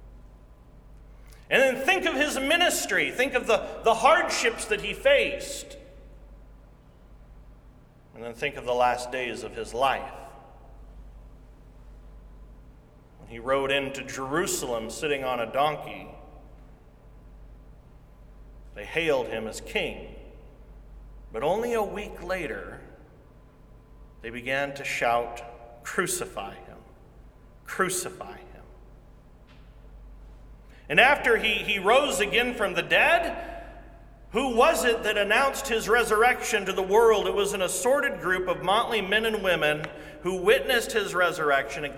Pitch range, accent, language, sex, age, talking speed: 150-240 Hz, American, English, male, 40-59, 120 wpm